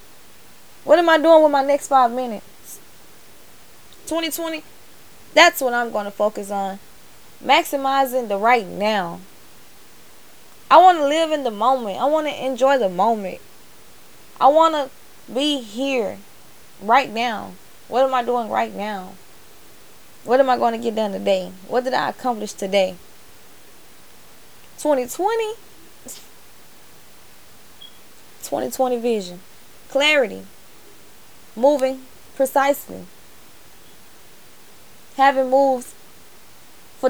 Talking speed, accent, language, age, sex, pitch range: 110 wpm, American, English, 10-29, female, 225-285 Hz